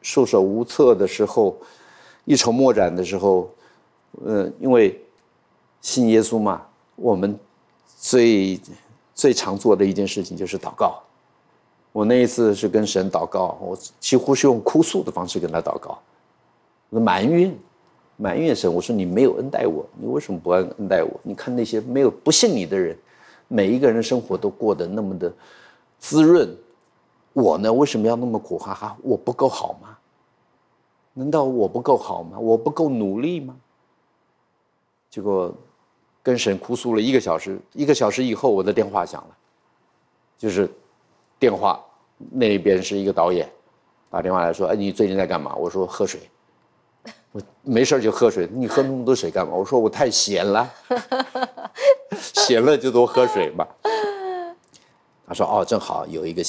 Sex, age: male, 50-69